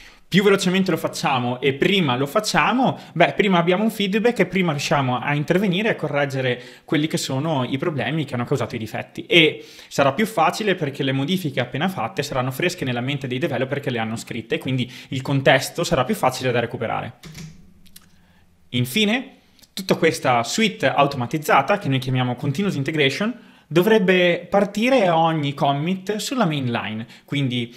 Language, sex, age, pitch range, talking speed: Italian, male, 20-39, 130-175 Hz, 160 wpm